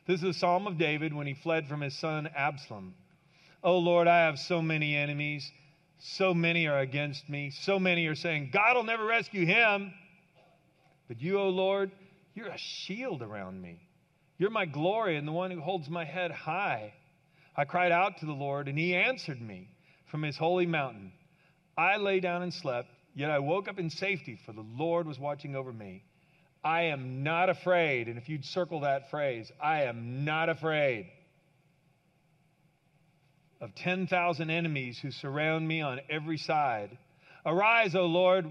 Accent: American